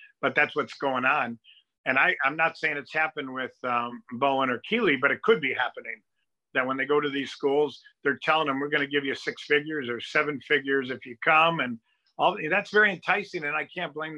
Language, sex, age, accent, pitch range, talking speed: English, male, 50-69, American, 130-160 Hz, 230 wpm